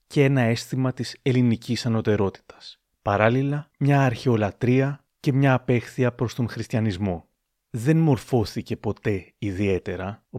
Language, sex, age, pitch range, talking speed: Greek, male, 30-49, 110-130 Hz, 115 wpm